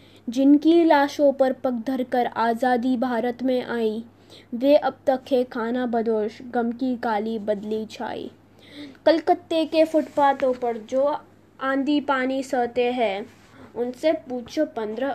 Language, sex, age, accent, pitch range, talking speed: Hindi, female, 20-39, native, 240-285 Hz, 125 wpm